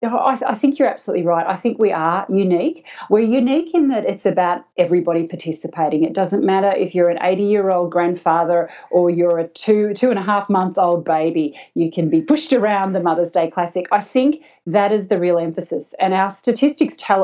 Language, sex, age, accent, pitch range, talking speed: English, female, 40-59, Australian, 170-220 Hz, 180 wpm